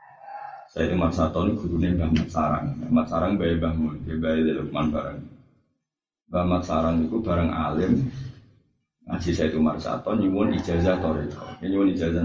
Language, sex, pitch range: Indonesian, male, 80-115 Hz